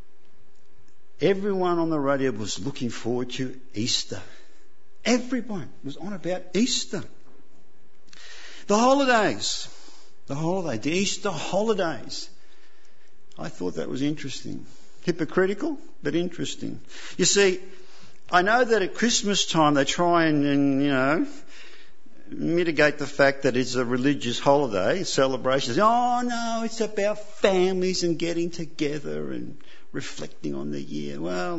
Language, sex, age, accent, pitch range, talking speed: English, male, 50-69, Australian, 140-205 Hz, 130 wpm